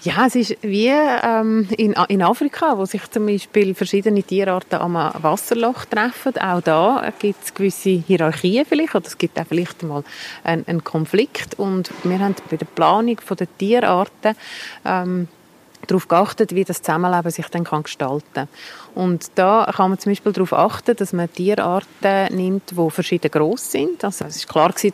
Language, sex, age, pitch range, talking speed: German, female, 30-49, 165-205 Hz, 175 wpm